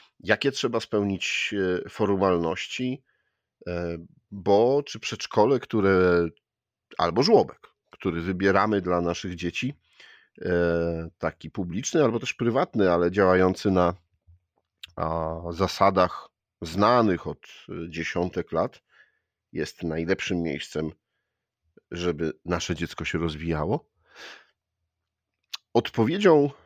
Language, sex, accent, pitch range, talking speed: Polish, male, native, 85-105 Hz, 85 wpm